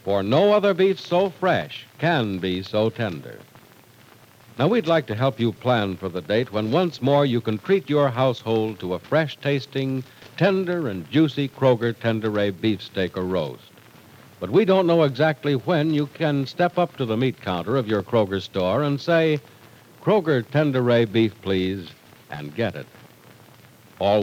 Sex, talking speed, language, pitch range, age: male, 165 wpm, English, 115-155 Hz, 60-79